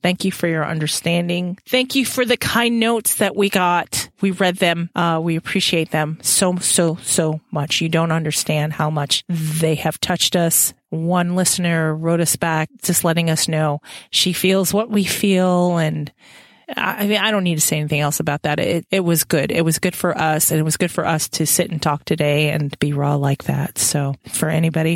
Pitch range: 160-230 Hz